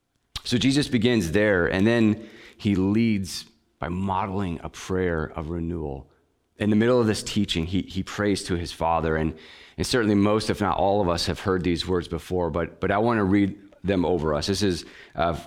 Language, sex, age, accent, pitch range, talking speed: English, male, 30-49, American, 80-100 Hz, 200 wpm